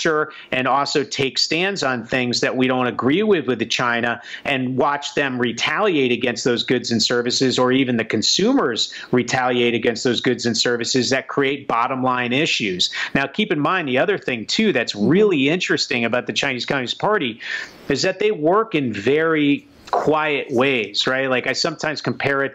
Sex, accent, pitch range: male, American, 120-140 Hz